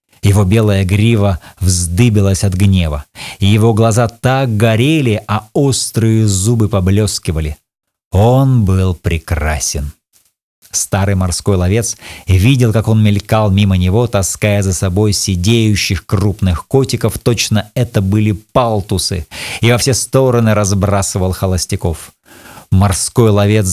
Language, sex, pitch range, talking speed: Russian, male, 95-120 Hz, 110 wpm